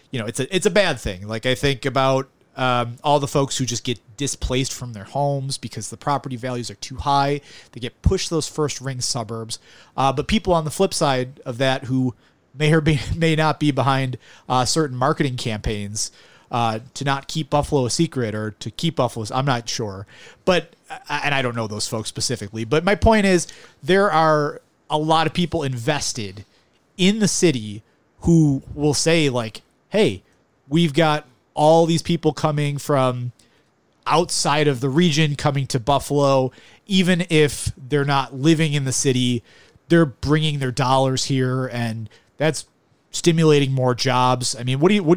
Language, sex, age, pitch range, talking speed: English, male, 30-49, 125-155 Hz, 185 wpm